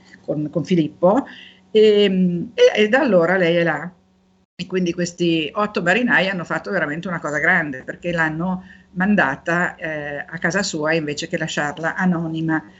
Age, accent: 50-69, native